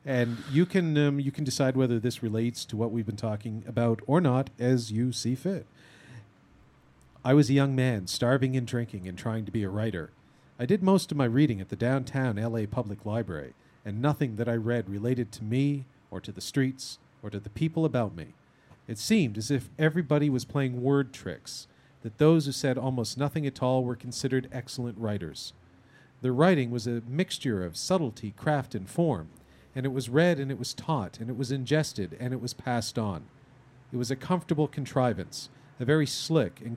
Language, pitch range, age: English, 115-145 Hz, 40-59